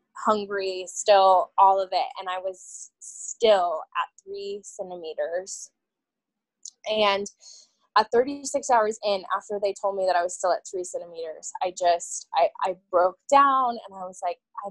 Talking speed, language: 160 wpm, English